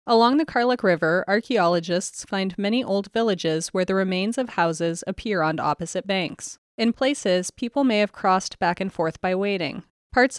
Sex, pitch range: female, 175-230 Hz